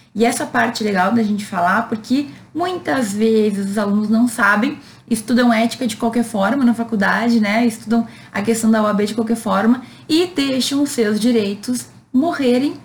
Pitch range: 215-250 Hz